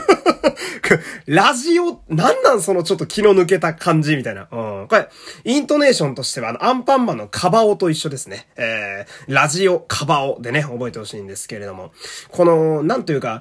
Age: 20-39